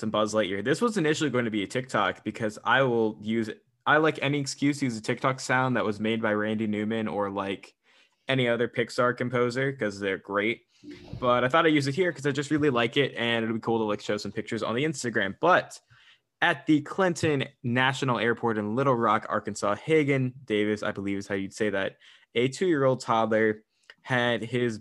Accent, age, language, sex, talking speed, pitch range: American, 10-29, English, male, 220 wpm, 110-130 Hz